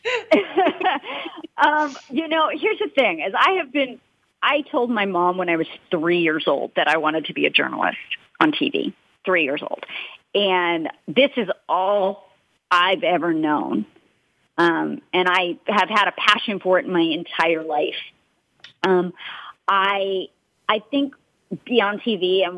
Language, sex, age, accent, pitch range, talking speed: English, female, 40-59, American, 185-255 Hz, 155 wpm